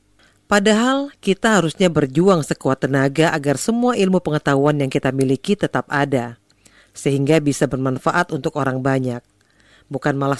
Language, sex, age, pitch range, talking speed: Indonesian, female, 40-59, 135-175 Hz, 135 wpm